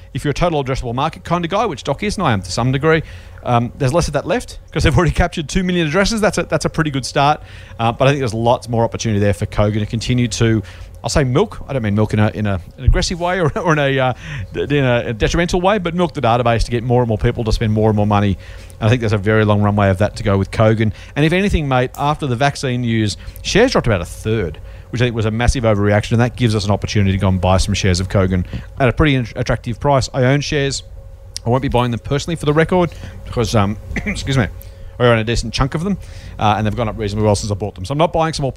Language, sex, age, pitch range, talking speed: English, male, 40-59, 105-145 Hz, 280 wpm